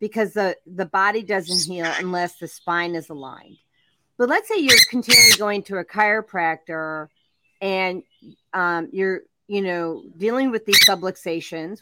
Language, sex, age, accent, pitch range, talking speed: English, female, 40-59, American, 170-235 Hz, 145 wpm